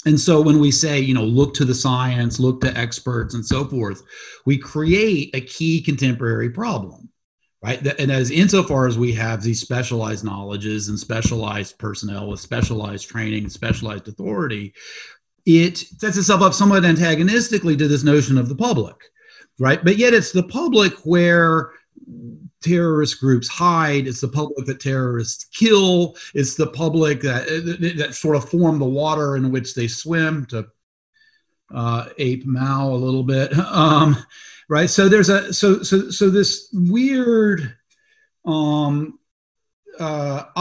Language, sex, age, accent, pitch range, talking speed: English, male, 40-59, American, 125-175 Hz, 155 wpm